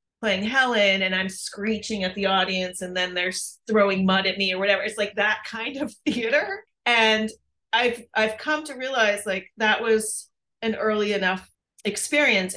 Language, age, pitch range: English, 30-49, 185-220 Hz